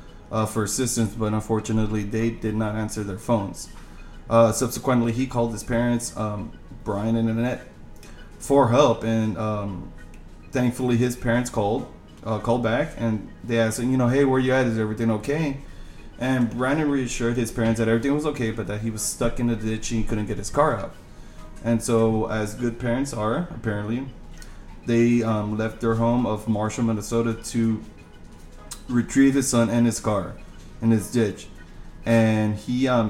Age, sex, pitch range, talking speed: 20-39, male, 105-120 Hz, 175 wpm